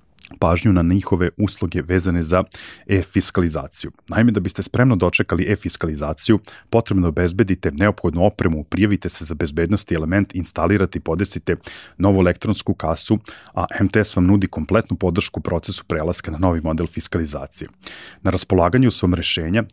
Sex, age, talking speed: male, 30-49, 135 wpm